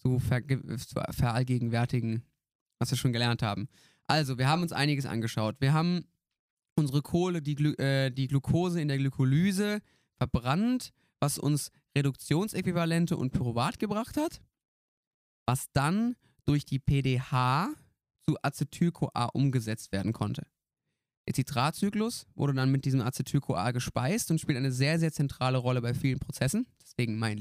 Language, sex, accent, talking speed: German, male, German, 130 wpm